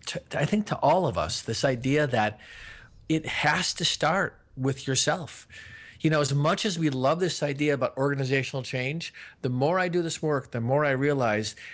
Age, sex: 50-69, male